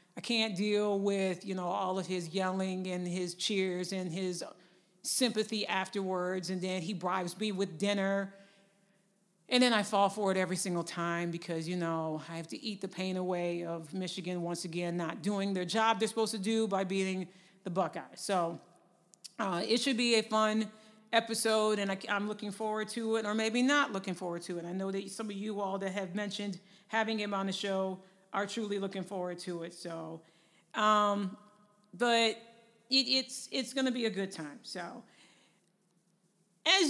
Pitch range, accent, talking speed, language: 185-215 Hz, American, 185 wpm, English